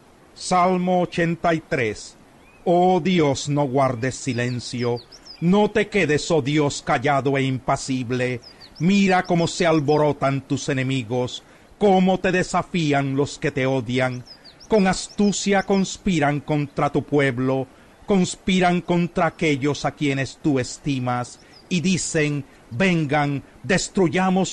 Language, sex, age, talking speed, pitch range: Spanish, male, 40-59, 110 wpm, 140-185 Hz